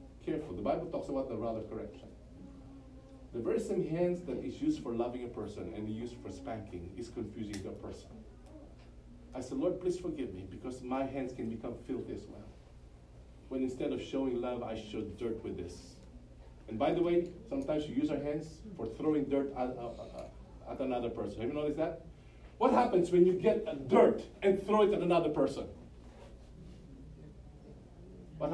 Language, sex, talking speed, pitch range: English, male, 180 wpm, 90-155 Hz